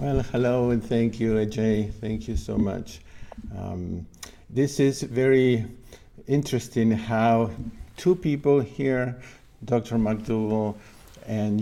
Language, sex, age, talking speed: English, male, 50-69, 115 wpm